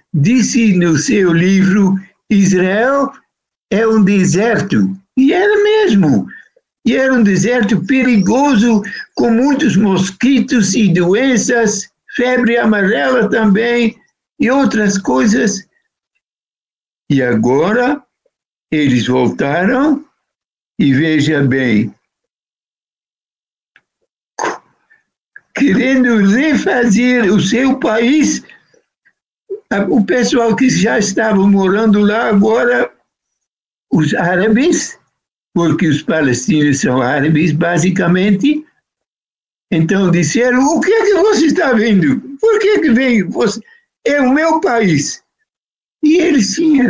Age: 60-79